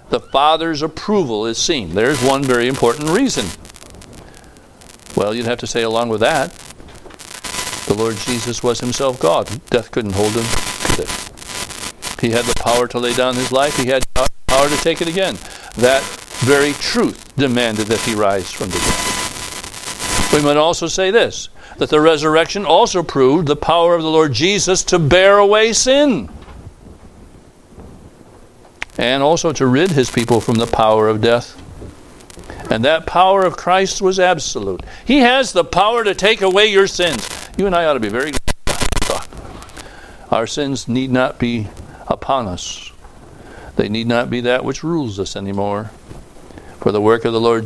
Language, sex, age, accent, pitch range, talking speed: English, male, 60-79, American, 115-165 Hz, 165 wpm